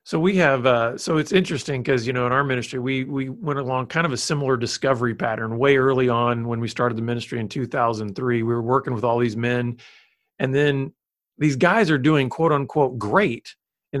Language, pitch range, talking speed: English, 125-175 Hz, 225 wpm